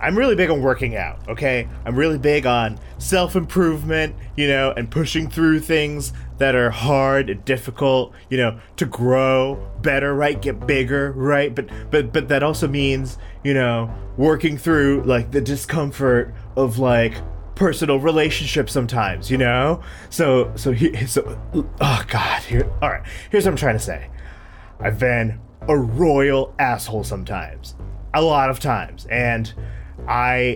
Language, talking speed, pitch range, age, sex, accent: English, 155 wpm, 105-145 Hz, 20-39, male, American